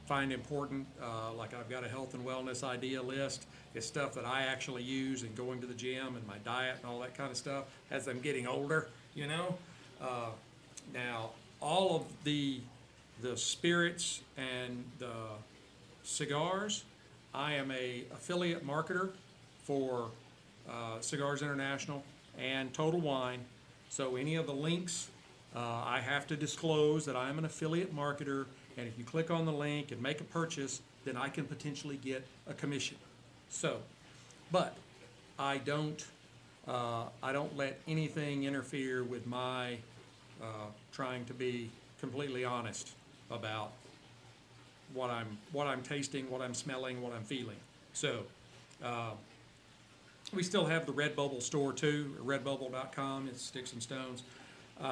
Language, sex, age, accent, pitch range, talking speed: English, male, 50-69, American, 125-145 Hz, 150 wpm